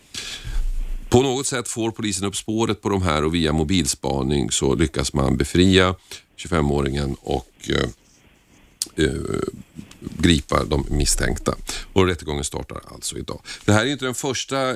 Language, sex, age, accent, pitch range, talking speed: Swedish, male, 40-59, native, 80-95 Hz, 135 wpm